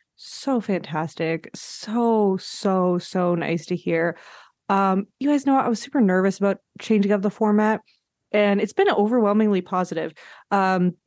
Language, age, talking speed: English, 20-39, 145 wpm